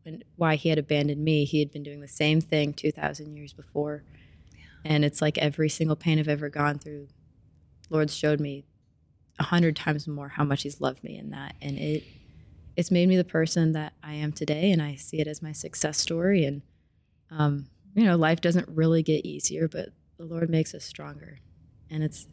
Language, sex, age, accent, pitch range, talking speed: English, female, 20-39, American, 145-160 Hz, 200 wpm